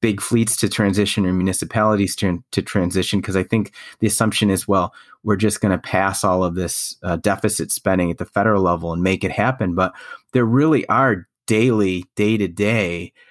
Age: 30-49